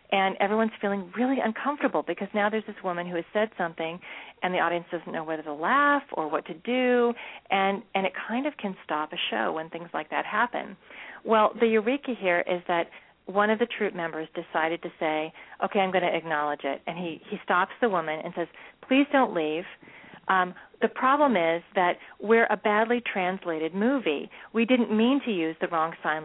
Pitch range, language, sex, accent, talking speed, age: 170-220 Hz, English, female, American, 205 wpm, 40-59